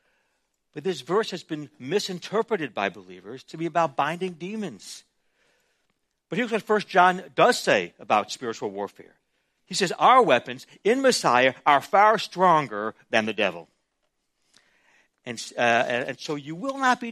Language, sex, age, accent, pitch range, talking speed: English, male, 60-79, American, 150-210 Hz, 150 wpm